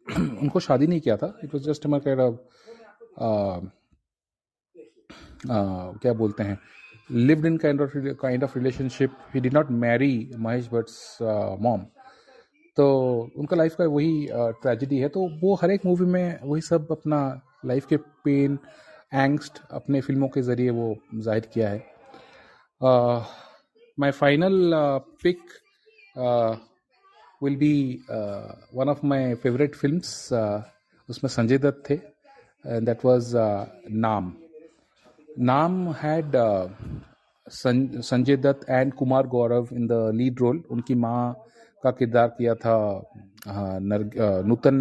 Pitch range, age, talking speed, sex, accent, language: 115-145 Hz, 30-49, 105 wpm, male, native, Hindi